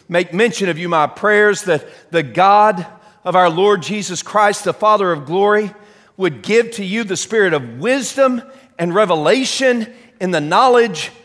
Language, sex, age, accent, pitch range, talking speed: English, male, 40-59, American, 170-250 Hz, 165 wpm